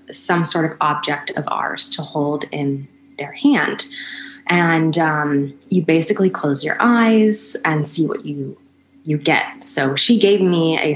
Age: 20-39